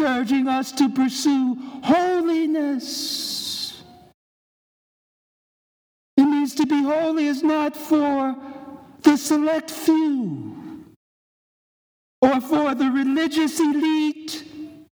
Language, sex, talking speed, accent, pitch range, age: English, male, 85 wpm, American, 200-290 Hz, 60-79